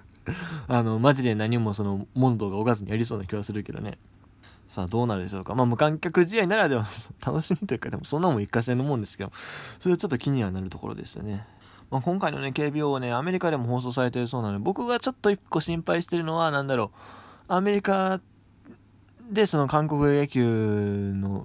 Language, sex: Japanese, male